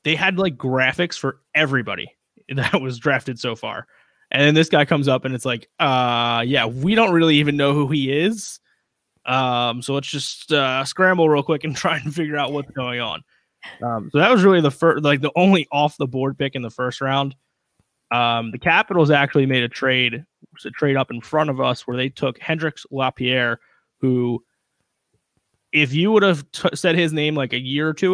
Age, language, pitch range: 20-39, English, 125-150 Hz